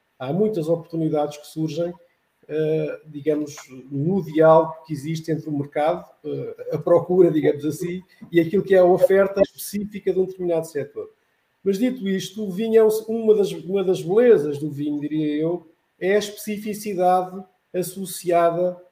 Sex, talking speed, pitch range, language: male, 135 wpm, 160-200 Hz, Portuguese